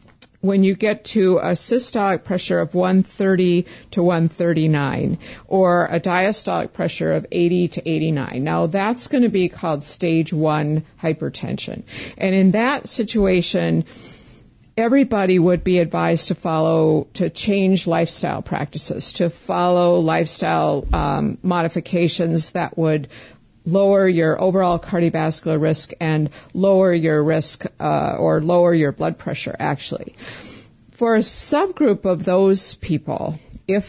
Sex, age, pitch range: female, 50-69, 160-190 Hz